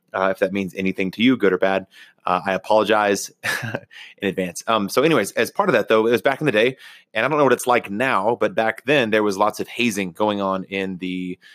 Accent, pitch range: American, 100-120 Hz